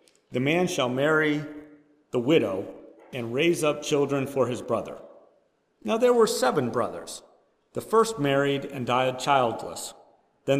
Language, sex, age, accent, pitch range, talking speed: English, male, 40-59, American, 135-185 Hz, 140 wpm